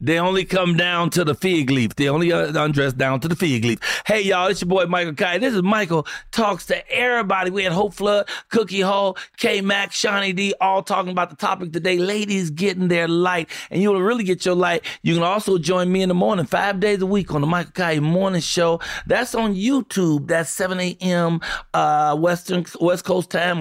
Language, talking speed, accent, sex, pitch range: English, 215 wpm, American, male, 150-200 Hz